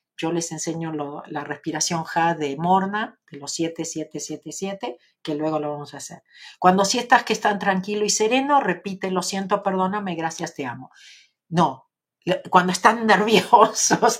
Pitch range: 160-185 Hz